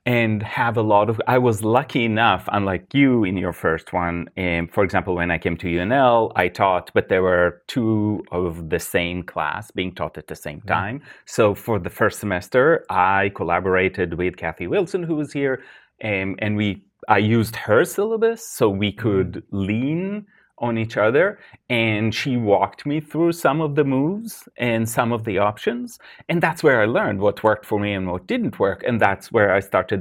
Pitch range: 100-130 Hz